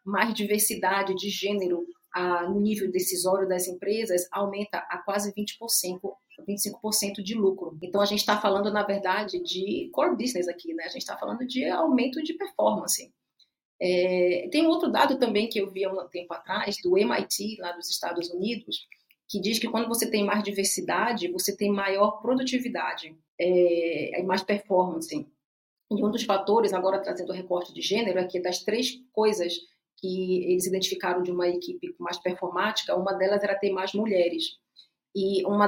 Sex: female